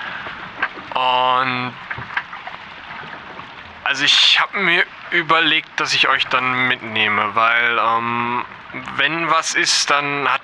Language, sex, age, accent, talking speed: German, male, 20-39, German, 105 wpm